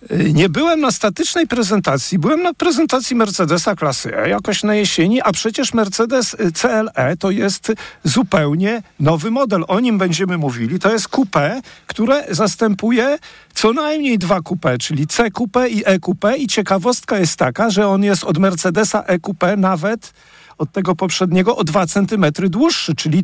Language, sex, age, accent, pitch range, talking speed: Polish, male, 50-69, native, 165-220 Hz, 160 wpm